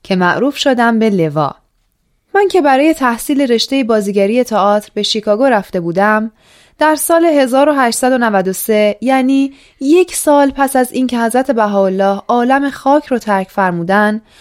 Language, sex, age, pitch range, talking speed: Persian, female, 10-29, 200-275 Hz, 135 wpm